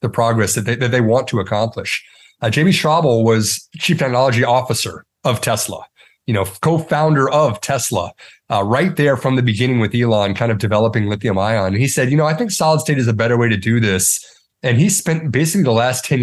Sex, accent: male, American